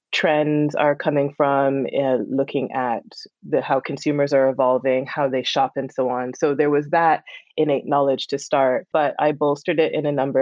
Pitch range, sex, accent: 130-150 Hz, female, American